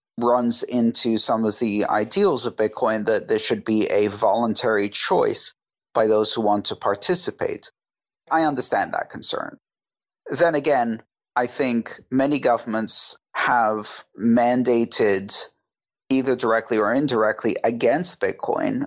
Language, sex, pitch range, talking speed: English, male, 110-130 Hz, 125 wpm